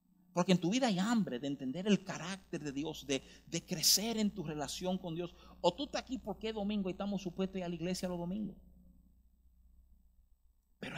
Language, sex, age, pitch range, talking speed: Spanish, male, 50-69, 140-220 Hz, 210 wpm